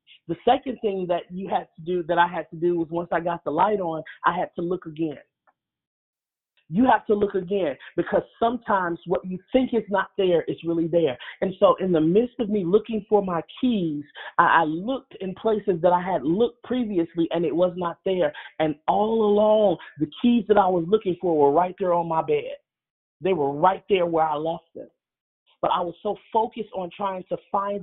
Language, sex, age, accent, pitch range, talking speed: English, male, 30-49, American, 170-200 Hz, 210 wpm